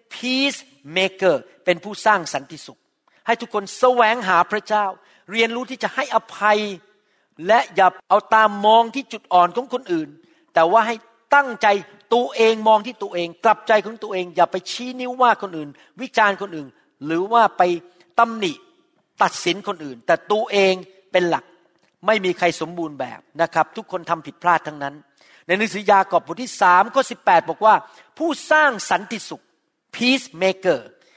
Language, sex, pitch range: Thai, male, 175-230 Hz